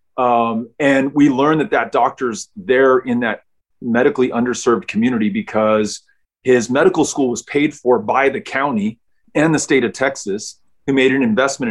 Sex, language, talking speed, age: male, English, 165 wpm, 30-49